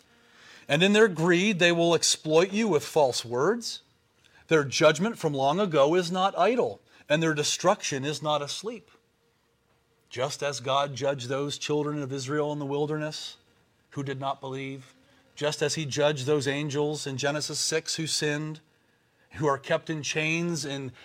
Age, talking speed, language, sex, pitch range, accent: 40-59, 165 wpm, English, male, 130-155 Hz, American